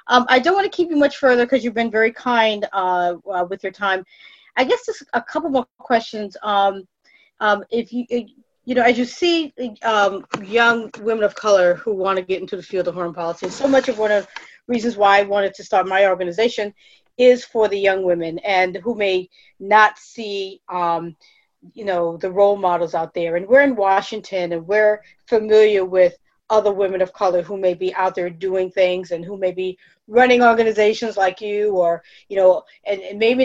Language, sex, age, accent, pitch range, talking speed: English, female, 40-59, American, 185-235 Hz, 210 wpm